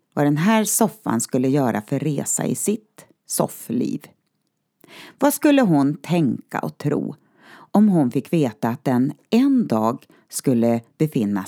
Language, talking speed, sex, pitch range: Swedish, 140 wpm, female, 140-215 Hz